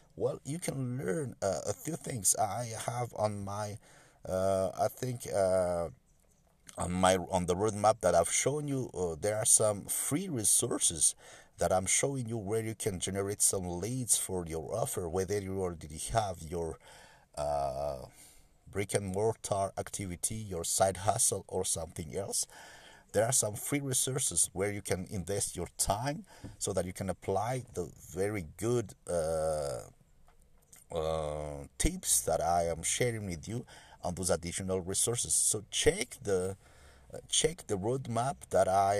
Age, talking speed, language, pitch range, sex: 50-69, 150 wpm, English, 90-115 Hz, male